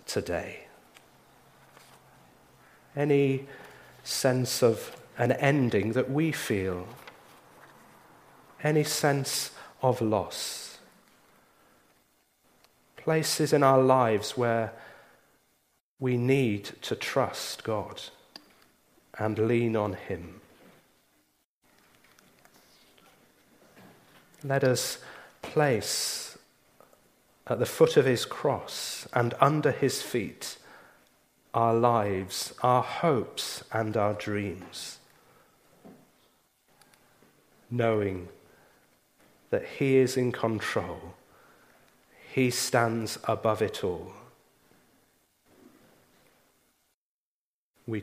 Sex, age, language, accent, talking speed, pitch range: male, 40-59, English, British, 75 wpm, 105-135 Hz